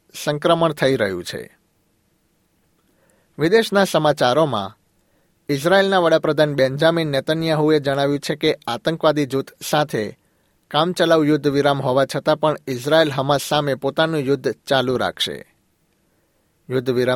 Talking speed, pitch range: 100 wpm, 135-155 Hz